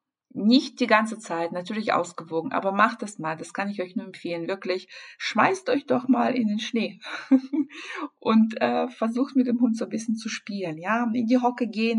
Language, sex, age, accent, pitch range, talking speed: German, female, 50-69, German, 180-235 Hz, 200 wpm